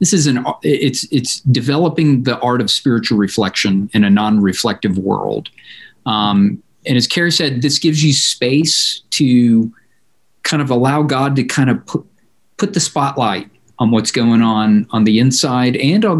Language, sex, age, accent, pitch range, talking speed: English, male, 50-69, American, 110-145 Hz, 165 wpm